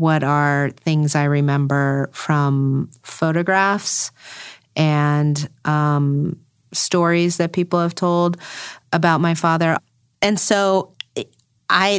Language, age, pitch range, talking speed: English, 30-49, 155-195 Hz, 100 wpm